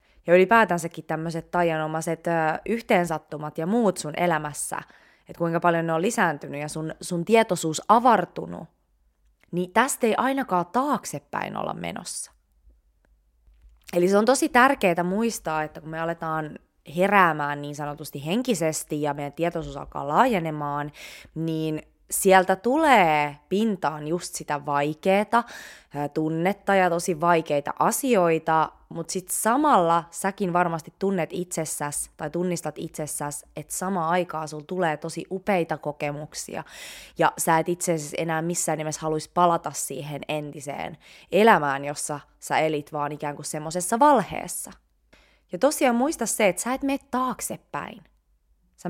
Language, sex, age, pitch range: Finnish, female, 20-39, 150-190 Hz